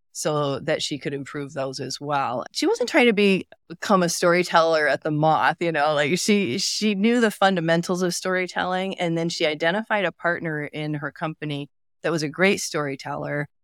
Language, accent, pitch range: English, American, 145-180 Hz